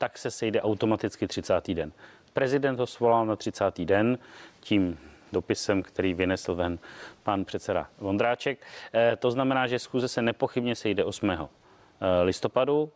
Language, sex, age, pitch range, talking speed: Czech, male, 30-49, 100-125 Hz, 140 wpm